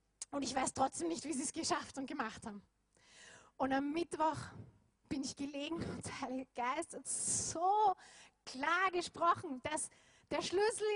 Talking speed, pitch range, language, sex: 160 wpm, 230-330 Hz, German, female